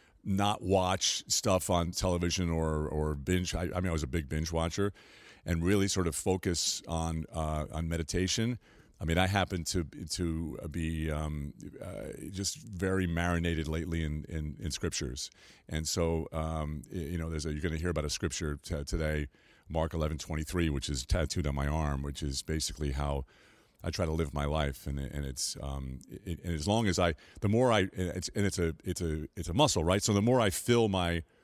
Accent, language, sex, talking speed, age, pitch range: American, English, male, 200 wpm, 40-59, 80-95 Hz